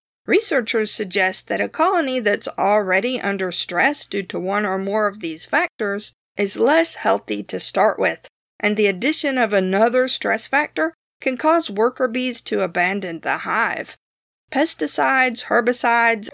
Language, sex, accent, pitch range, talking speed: English, female, American, 195-255 Hz, 145 wpm